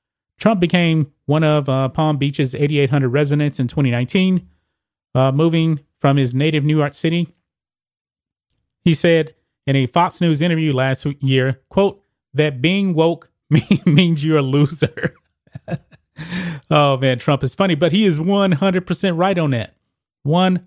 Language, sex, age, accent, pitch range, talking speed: English, male, 30-49, American, 135-165 Hz, 145 wpm